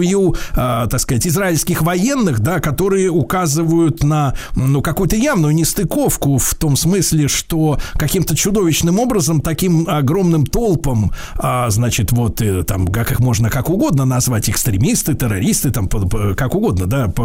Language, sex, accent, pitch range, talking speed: Russian, male, native, 125-165 Hz, 130 wpm